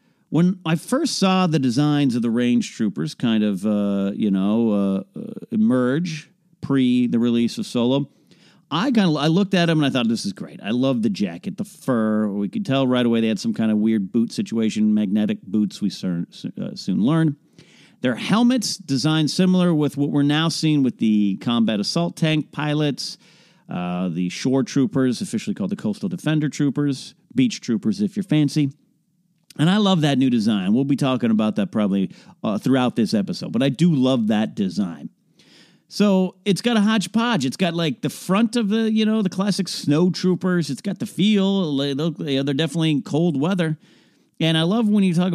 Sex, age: male, 50-69